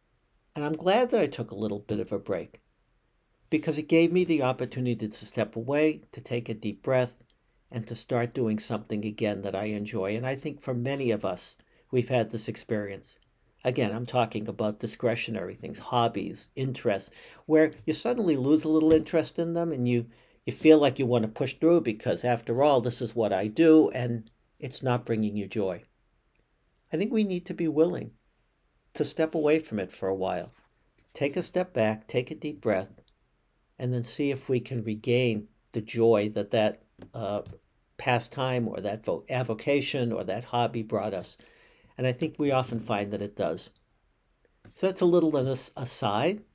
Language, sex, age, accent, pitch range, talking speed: English, male, 60-79, American, 110-150 Hz, 190 wpm